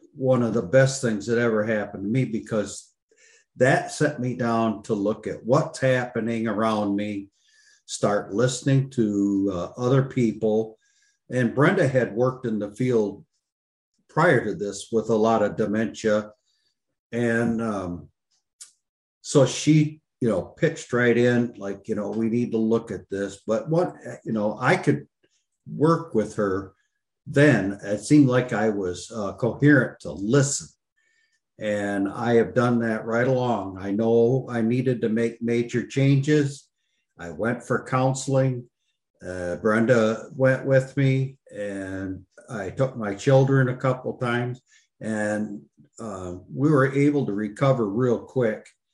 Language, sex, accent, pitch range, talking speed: English, male, American, 105-130 Hz, 150 wpm